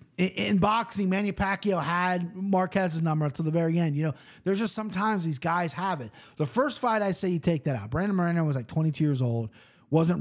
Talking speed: 215 wpm